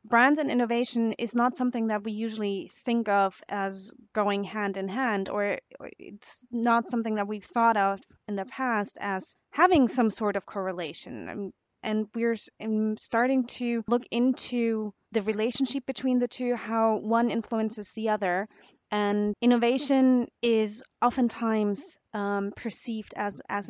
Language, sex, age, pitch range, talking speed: English, female, 20-39, 200-240 Hz, 145 wpm